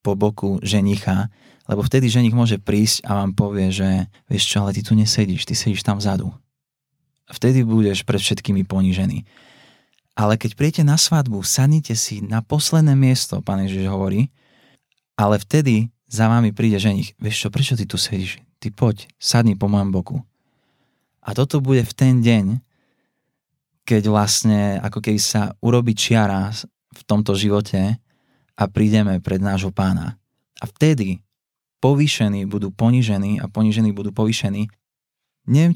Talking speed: 150 wpm